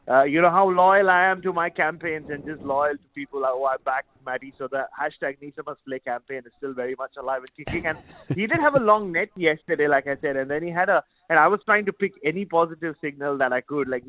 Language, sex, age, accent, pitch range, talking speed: English, male, 30-49, Indian, 130-155 Hz, 265 wpm